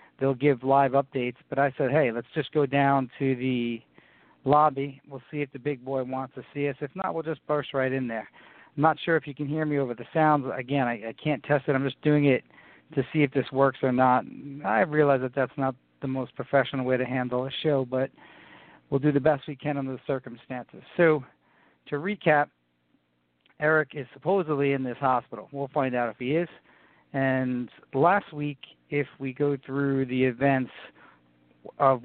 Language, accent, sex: English, American, male